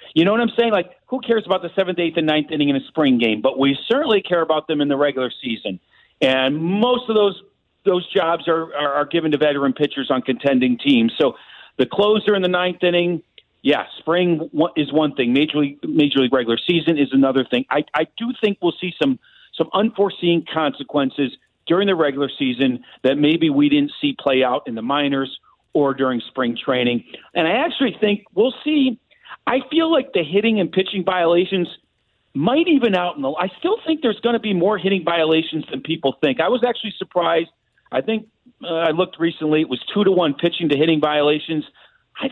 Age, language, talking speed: 50-69, English, 205 wpm